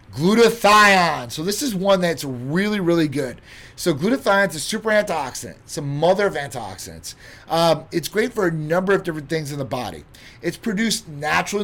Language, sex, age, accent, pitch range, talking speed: English, male, 30-49, American, 130-175 Hz, 175 wpm